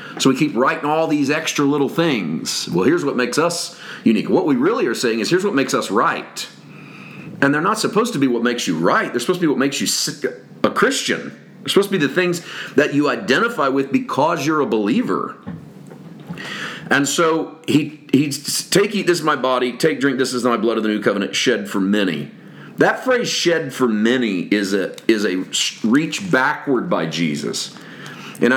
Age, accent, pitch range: 40-59, American, 125-160 Hz